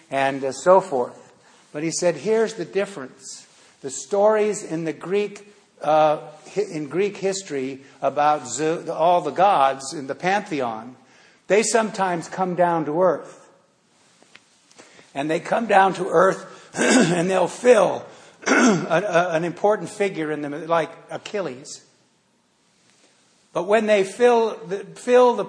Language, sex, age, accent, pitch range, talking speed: English, male, 60-79, American, 170-215 Hz, 135 wpm